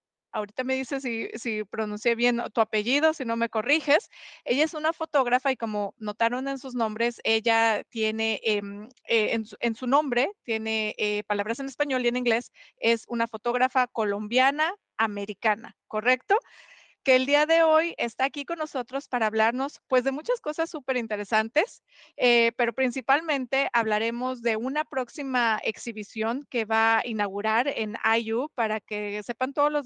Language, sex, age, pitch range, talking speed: Spanish, female, 30-49, 220-265 Hz, 165 wpm